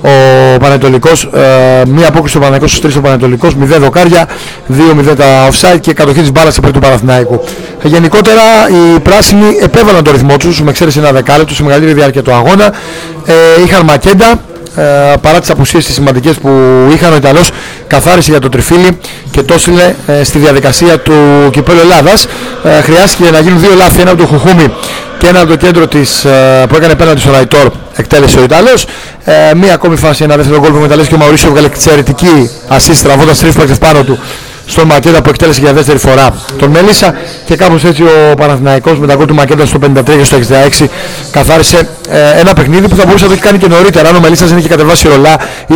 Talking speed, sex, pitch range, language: 190 wpm, male, 140-170 Hz, Greek